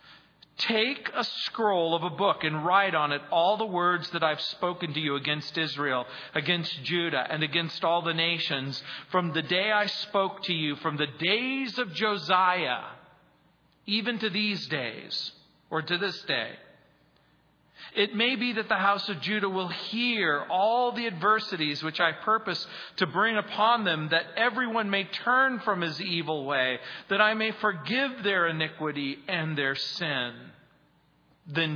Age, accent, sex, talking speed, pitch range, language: 40-59, American, male, 160 wpm, 150-205 Hz, English